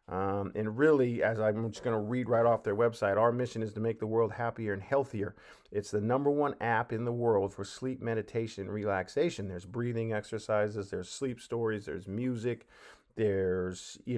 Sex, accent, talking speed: male, American, 195 wpm